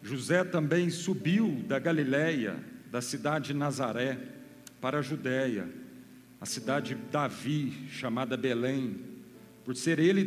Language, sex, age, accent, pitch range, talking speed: Portuguese, male, 50-69, Brazilian, 130-175 Hz, 125 wpm